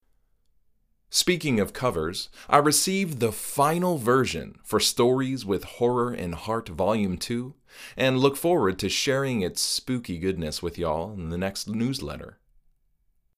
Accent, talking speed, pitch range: American, 135 wpm, 85-120 Hz